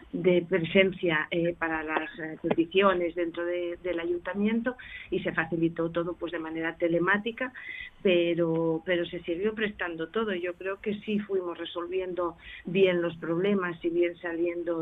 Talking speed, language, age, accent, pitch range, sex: 150 wpm, Spanish, 40-59, Spanish, 165-190 Hz, female